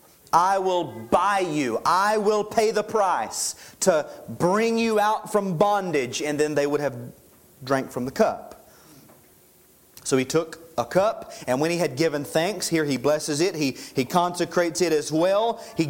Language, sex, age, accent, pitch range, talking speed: English, male, 30-49, American, 140-185 Hz, 175 wpm